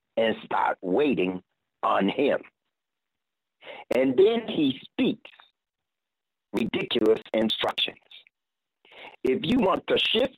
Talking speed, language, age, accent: 95 wpm, English, 60-79, American